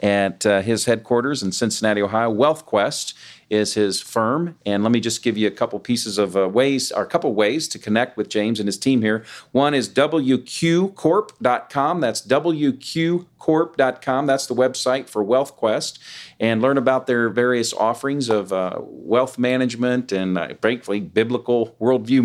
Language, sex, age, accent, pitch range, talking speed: English, male, 40-59, American, 110-130 Hz, 160 wpm